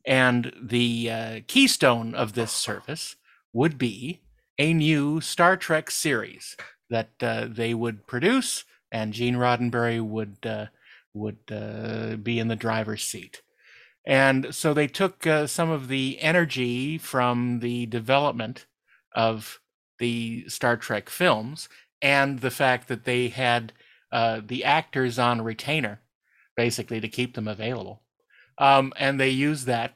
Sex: male